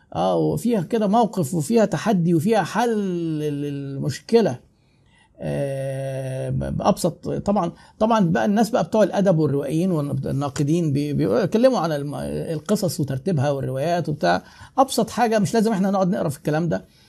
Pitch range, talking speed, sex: 140-195 Hz, 130 wpm, male